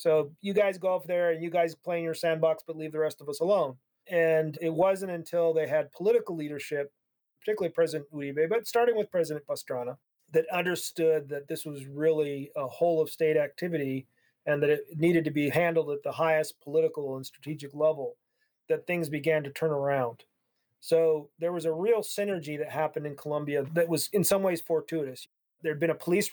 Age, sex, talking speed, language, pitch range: 40-59, male, 200 wpm, English, 150-170 Hz